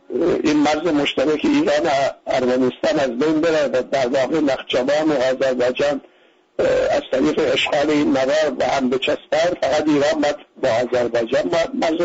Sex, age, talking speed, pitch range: male, 60-79, 145 wpm, 135-200 Hz